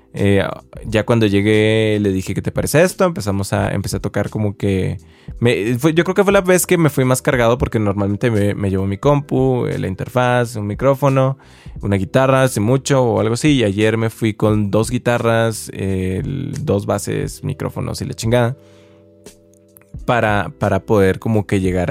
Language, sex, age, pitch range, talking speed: Spanish, male, 20-39, 100-130 Hz, 185 wpm